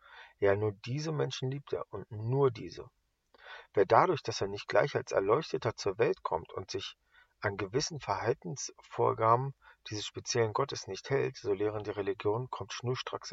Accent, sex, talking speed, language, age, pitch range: German, male, 160 wpm, English, 40-59, 100-130 Hz